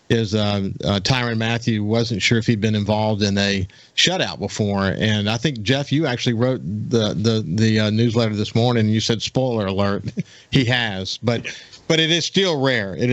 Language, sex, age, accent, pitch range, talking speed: English, male, 50-69, American, 110-135 Hz, 195 wpm